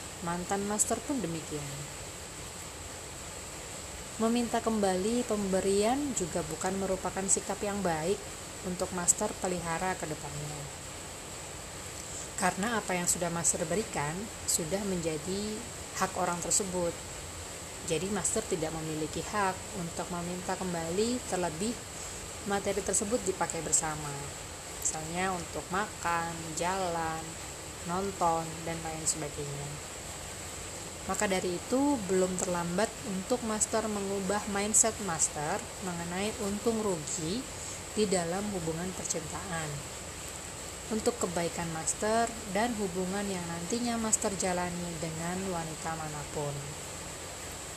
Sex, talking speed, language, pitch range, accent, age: female, 100 wpm, Indonesian, 160-200 Hz, native, 20-39